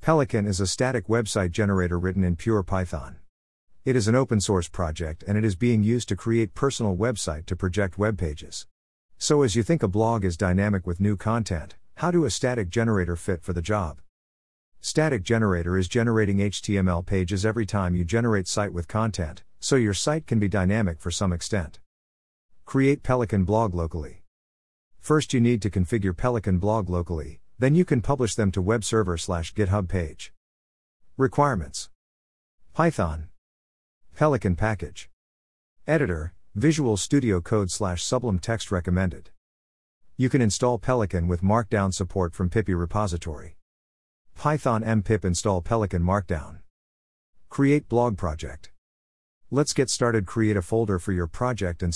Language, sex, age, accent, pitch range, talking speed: English, male, 50-69, American, 85-115 Hz, 155 wpm